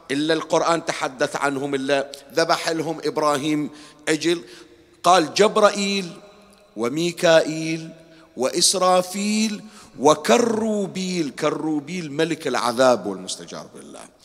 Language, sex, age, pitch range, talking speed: Arabic, male, 50-69, 155-215 Hz, 80 wpm